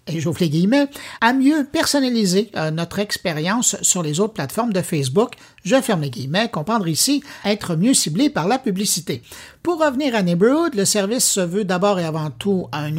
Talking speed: 180 wpm